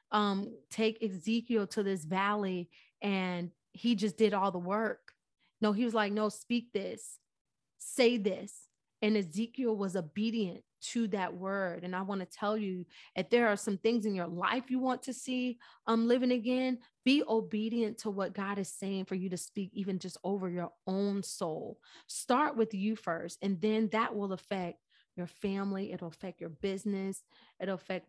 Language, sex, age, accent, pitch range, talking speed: English, female, 30-49, American, 190-225 Hz, 175 wpm